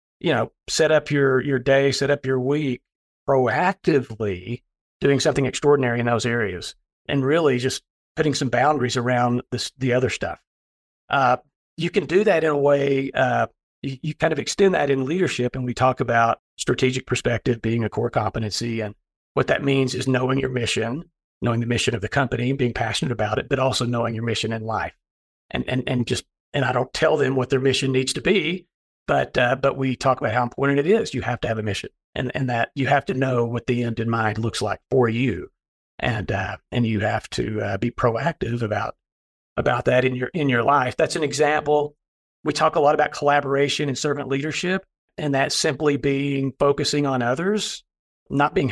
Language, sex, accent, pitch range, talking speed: English, male, American, 120-140 Hz, 205 wpm